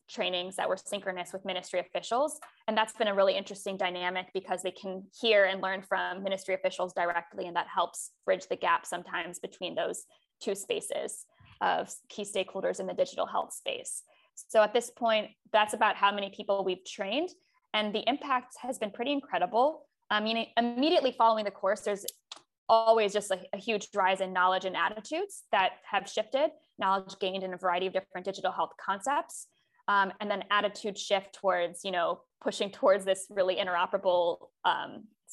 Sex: female